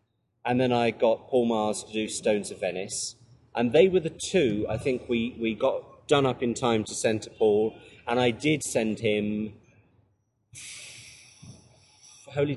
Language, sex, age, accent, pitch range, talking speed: English, male, 30-49, British, 110-140 Hz, 165 wpm